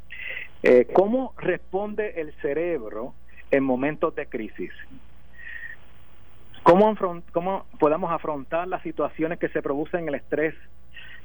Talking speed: 105 wpm